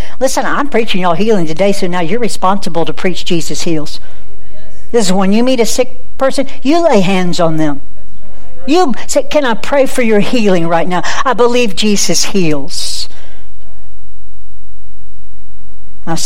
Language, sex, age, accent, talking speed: English, female, 60-79, American, 155 wpm